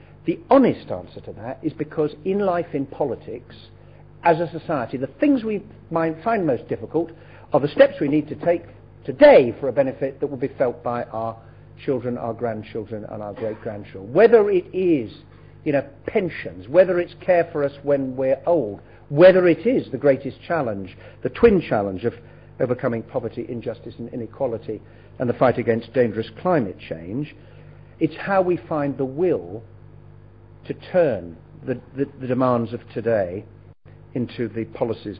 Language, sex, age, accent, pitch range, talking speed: English, male, 50-69, British, 115-175 Hz, 165 wpm